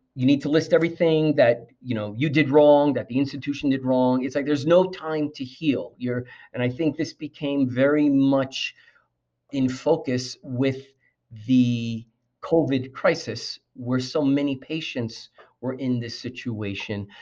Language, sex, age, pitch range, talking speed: English, male, 40-59, 120-145 Hz, 155 wpm